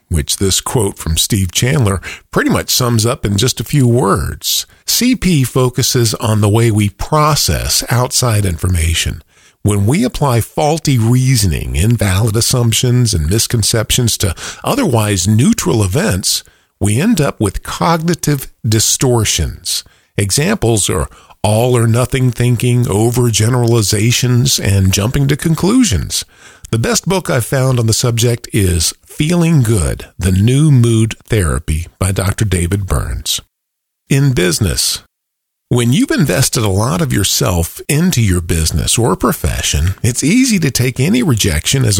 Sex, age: male, 50-69